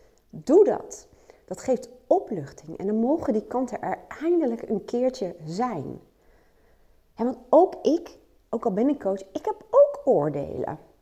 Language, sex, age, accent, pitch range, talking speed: Dutch, female, 30-49, Dutch, 180-270 Hz, 150 wpm